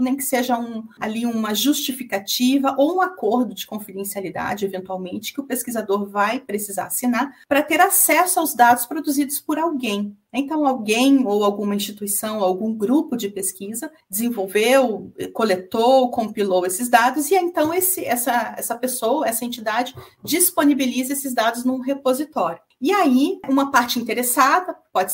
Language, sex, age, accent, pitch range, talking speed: Portuguese, female, 40-59, Brazilian, 210-285 Hz, 140 wpm